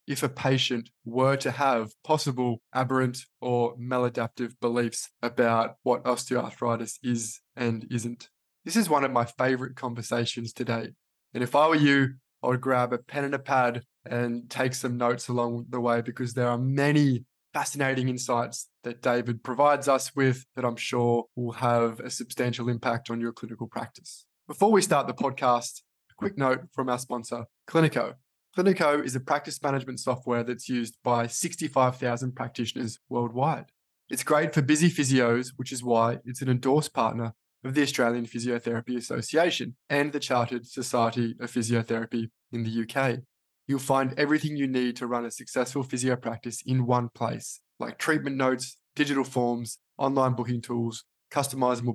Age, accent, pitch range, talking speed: 20-39, Australian, 120-135 Hz, 165 wpm